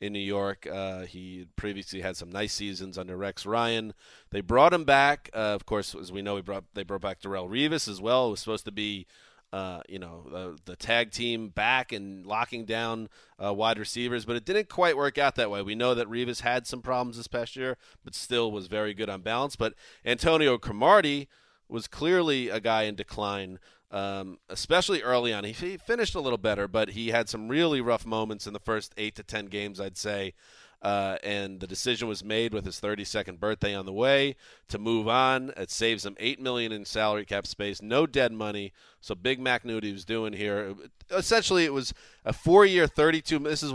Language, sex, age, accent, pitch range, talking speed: English, male, 30-49, American, 100-125 Hz, 215 wpm